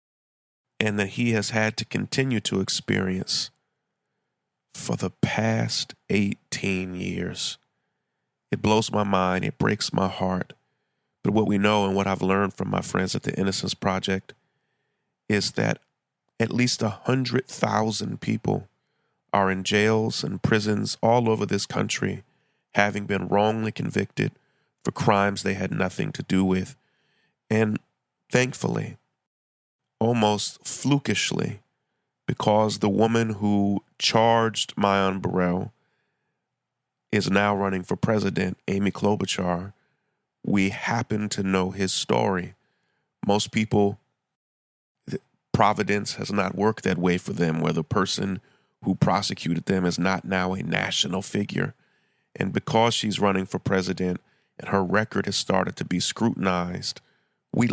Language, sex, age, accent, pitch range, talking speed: English, male, 40-59, American, 95-110 Hz, 130 wpm